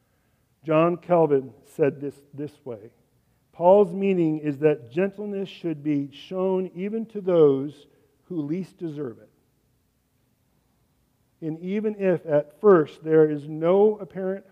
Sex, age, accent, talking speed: male, 50-69, American, 125 wpm